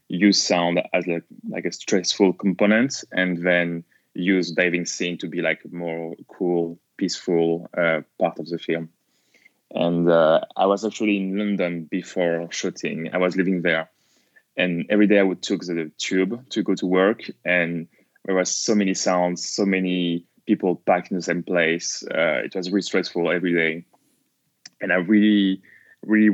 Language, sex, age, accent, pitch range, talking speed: English, male, 20-39, French, 85-100 Hz, 170 wpm